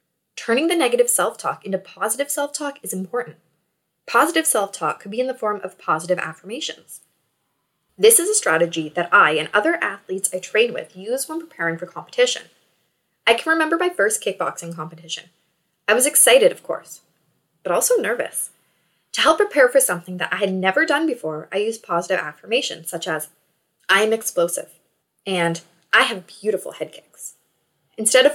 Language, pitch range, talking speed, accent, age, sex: English, 175-280 Hz, 165 wpm, American, 20-39, female